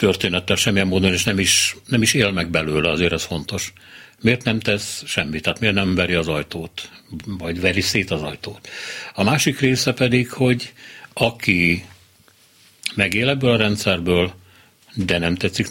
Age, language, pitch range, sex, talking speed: 60-79, Hungarian, 85-115 Hz, male, 160 wpm